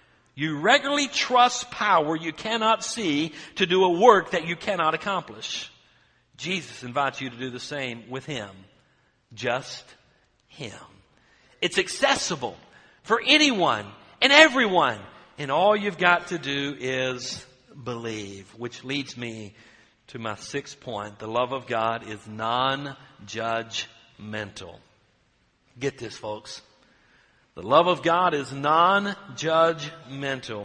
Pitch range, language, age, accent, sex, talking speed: 125-180 Hz, English, 60-79, American, male, 120 wpm